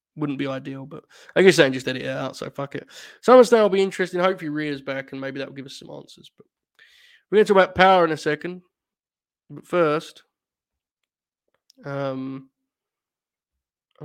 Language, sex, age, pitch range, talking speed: English, male, 20-39, 140-180 Hz, 190 wpm